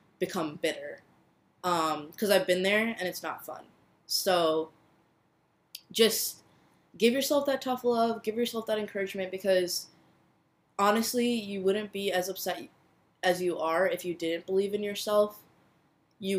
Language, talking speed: English, 145 wpm